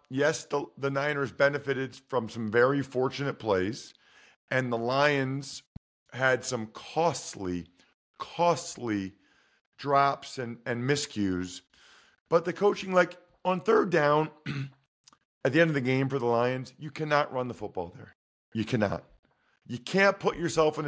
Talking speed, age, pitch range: 145 wpm, 40-59, 125-165 Hz